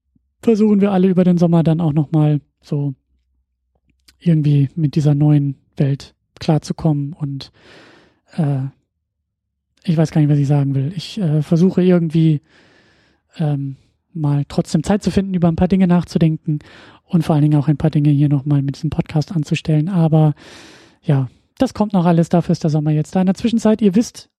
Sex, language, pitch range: male, German, 145-180 Hz